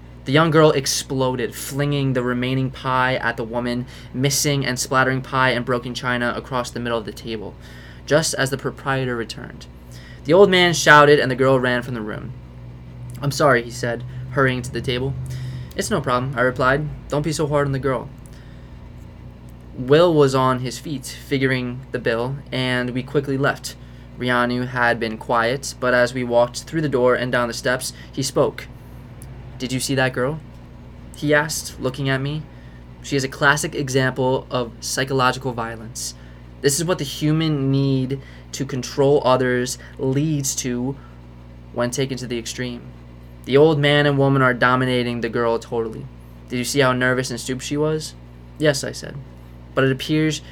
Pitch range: 115-140 Hz